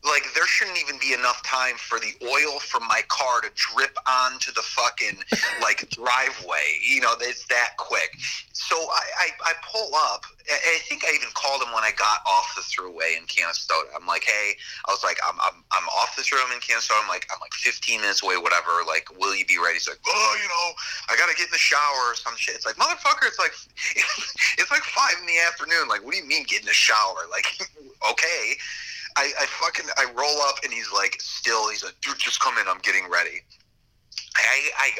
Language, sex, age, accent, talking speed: English, male, 30-49, American, 225 wpm